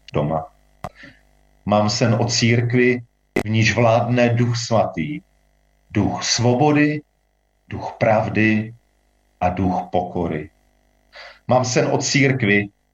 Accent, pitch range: native, 95-120 Hz